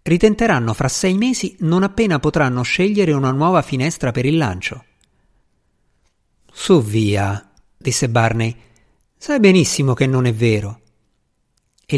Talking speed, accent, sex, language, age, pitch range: 125 wpm, native, male, Italian, 50-69, 115-175 Hz